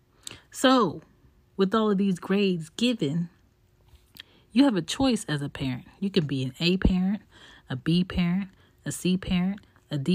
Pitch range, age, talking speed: 135-180 Hz, 30-49, 165 wpm